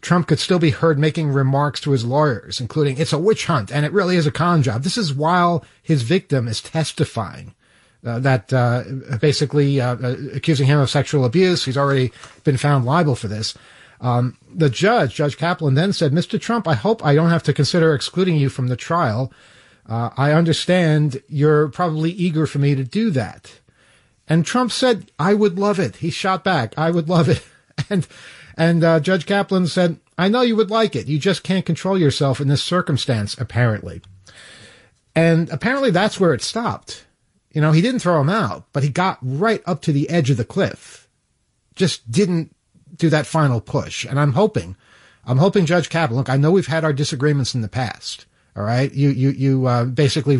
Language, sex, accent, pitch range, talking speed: English, male, American, 135-170 Hz, 200 wpm